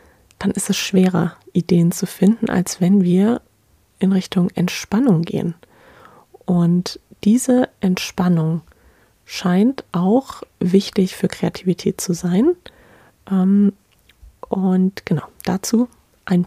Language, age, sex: German, 30-49, female